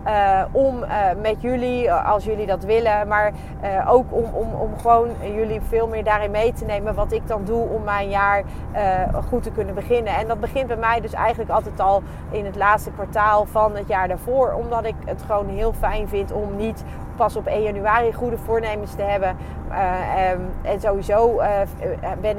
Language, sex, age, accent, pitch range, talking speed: Dutch, female, 30-49, Dutch, 205-250 Hz, 200 wpm